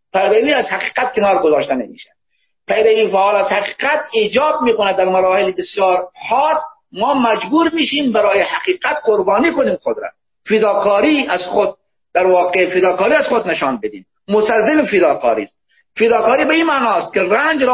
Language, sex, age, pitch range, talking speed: Persian, male, 50-69, 190-285 Hz, 150 wpm